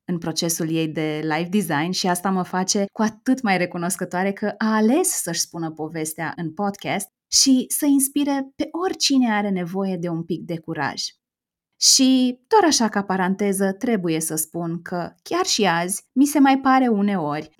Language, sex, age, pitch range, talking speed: Romanian, female, 20-39, 180-225 Hz, 175 wpm